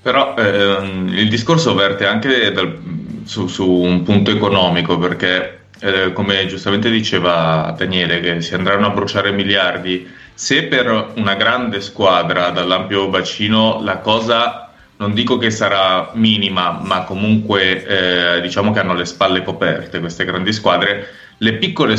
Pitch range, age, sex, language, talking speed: 90-110 Hz, 20-39, male, Italian, 140 wpm